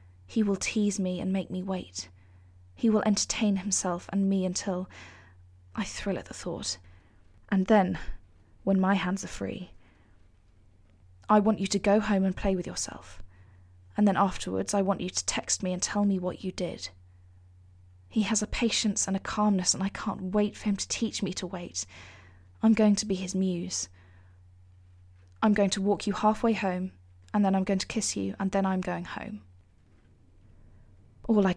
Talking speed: 185 wpm